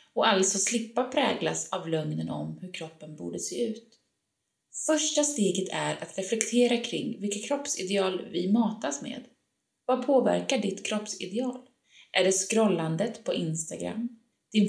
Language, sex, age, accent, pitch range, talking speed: Swedish, female, 20-39, native, 175-245 Hz, 135 wpm